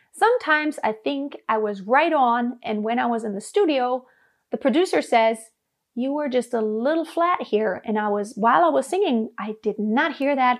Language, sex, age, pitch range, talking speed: English, female, 30-49, 225-300 Hz, 205 wpm